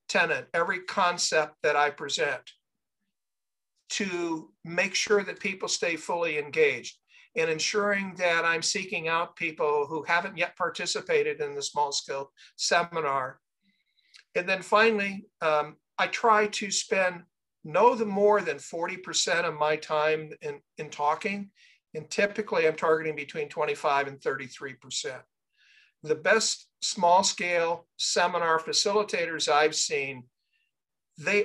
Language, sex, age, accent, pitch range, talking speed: English, male, 50-69, American, 155-220 Hz, 125 wpm